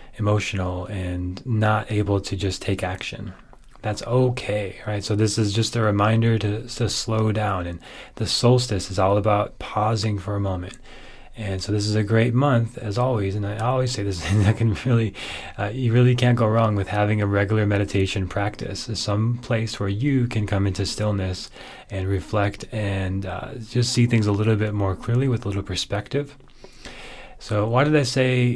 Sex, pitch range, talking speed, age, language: male, 100-120 Hz, 190 wpm, 30-49, English